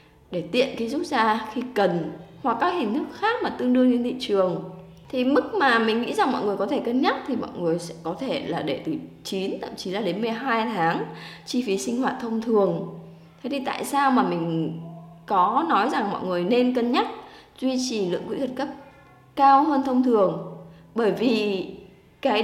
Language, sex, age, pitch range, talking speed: Vietnamese, female, 20-39, 190-260 Hz, 210 wpm